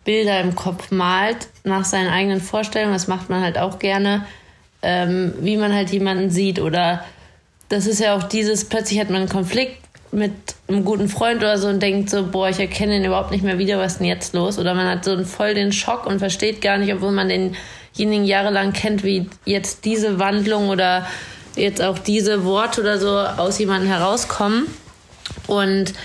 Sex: female